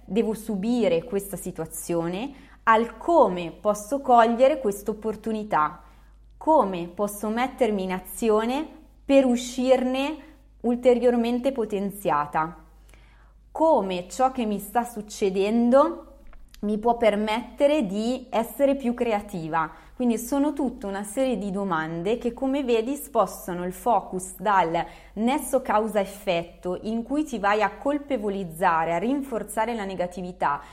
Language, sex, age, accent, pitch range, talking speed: Italian, female, 20-39, native, 190-250 Hz, 115 wpm